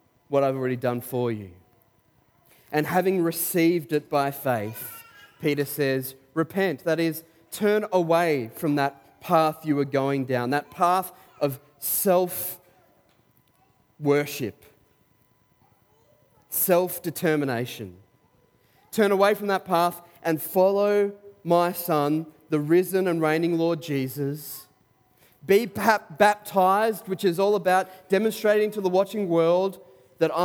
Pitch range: 150-195 Hz